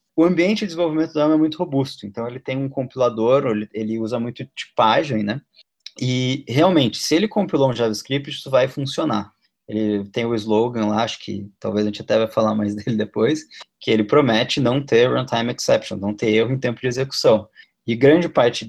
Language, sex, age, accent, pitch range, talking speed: Portuguese, male, 20-39, Brazilian, 110-135 Hz, 200 wpm